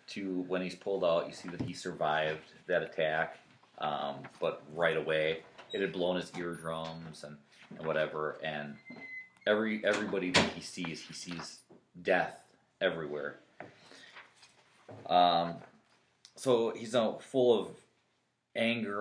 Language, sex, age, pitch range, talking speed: English, male, 30-49, 85-100 Hz, 135 wpm